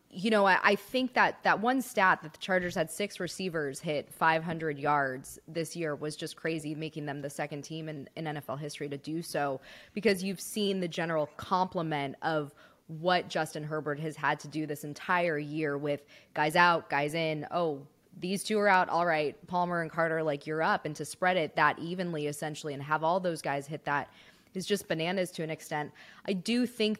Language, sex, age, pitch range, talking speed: English, female, 20-39, 155-185 Hz, 205 wpm